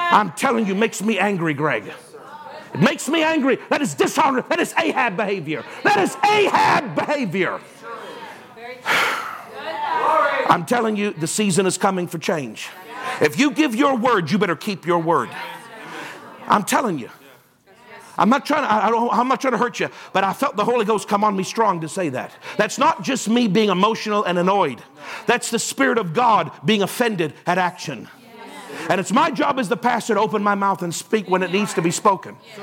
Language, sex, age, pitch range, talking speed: English, male, 50-69, 190-250 Hz, 195 wpm